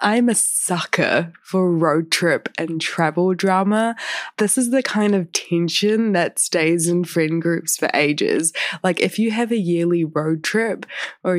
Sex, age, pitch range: female, 20-39, 170-195 Hz